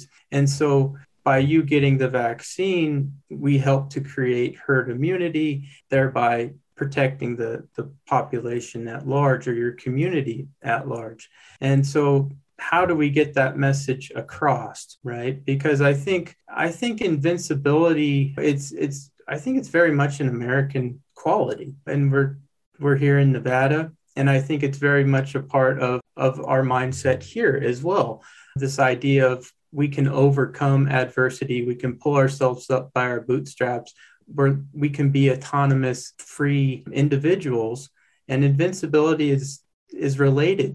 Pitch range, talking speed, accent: 130-150 Hz, 145 wpm, American